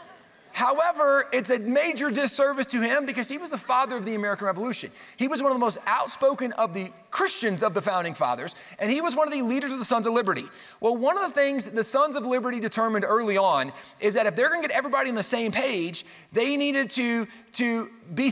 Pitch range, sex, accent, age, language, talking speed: 210-265 Hz, male, American, 30-49, English, 235 wpm